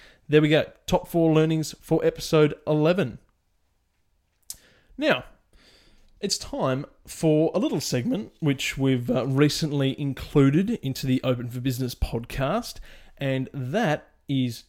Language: English